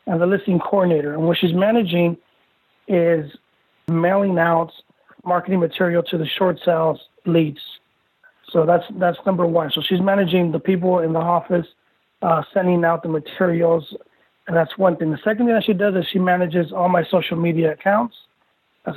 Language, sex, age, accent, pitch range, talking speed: English, male, 40-59, American, 165-185 Hz, 175 wpm